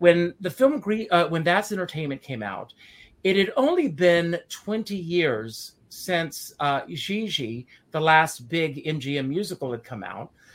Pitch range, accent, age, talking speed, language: 135-185 Hz, American, 40-59, 150 wpm, English